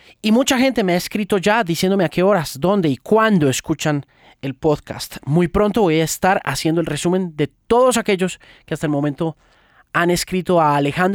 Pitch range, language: 135-175 Hz, Spanish